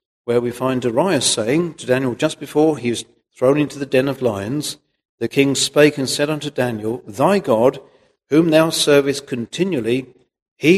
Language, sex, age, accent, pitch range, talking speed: English, male, 60-79, British, 125-155 Hz, 175 wpm